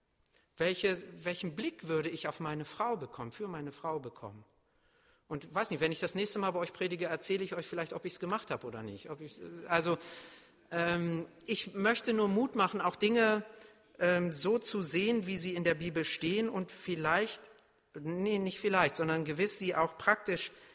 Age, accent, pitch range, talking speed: 50-69, German, 150-190 Hz, 190 wpm